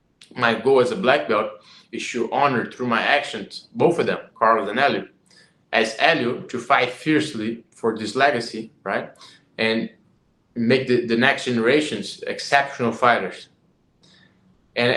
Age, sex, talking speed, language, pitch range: 20-39, male, 145 wpm, English, 110-125 Hz